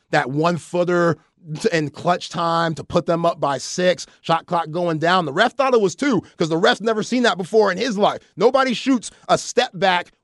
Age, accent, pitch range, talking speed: 30-49, American, 180-260 Hz, 205 wpm